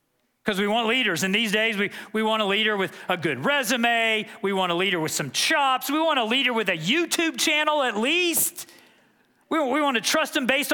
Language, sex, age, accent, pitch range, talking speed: English, male, 40-59, American, 165-255 Hz, 225 wpm